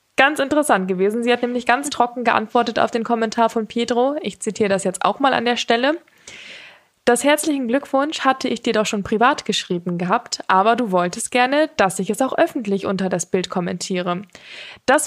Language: German